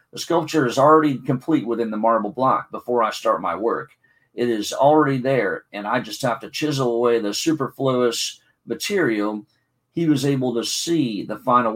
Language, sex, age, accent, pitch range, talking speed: English, male, 50-69, American, 115-150 Hz, 180 wpm